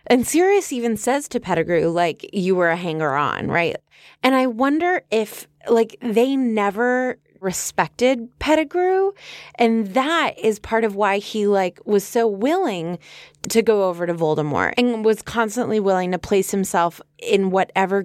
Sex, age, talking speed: female, 20-39, 155 wpm